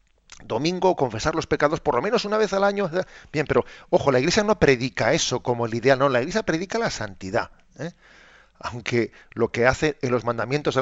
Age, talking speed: 40-59, 205 wpm